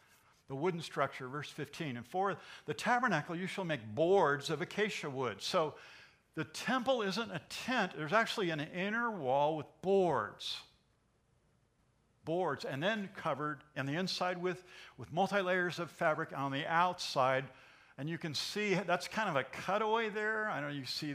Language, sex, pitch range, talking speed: English, male, 130-175 Hz, 165 wpm